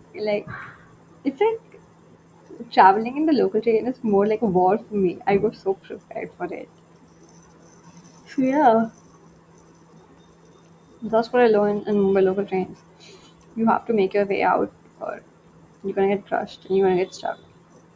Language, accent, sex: English, Indian, female